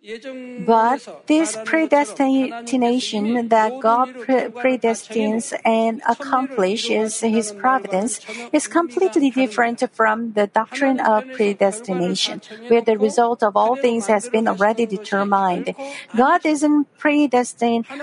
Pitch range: 220-270 Hz